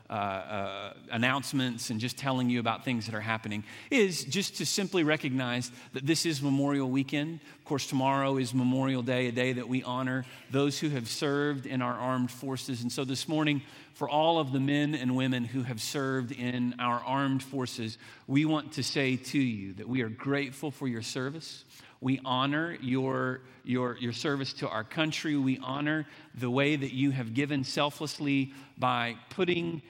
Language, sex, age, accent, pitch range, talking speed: English, male, 40-59, American, 120-145 Hz, 185 wpm